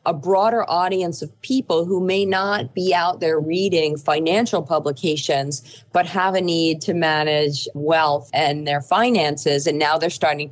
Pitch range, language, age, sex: 140-175 Hz, English, 40-59, female